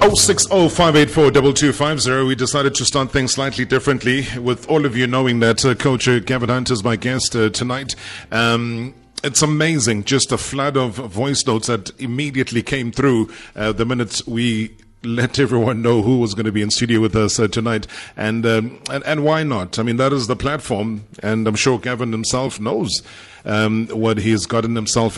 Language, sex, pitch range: English, male, 110-130 Hz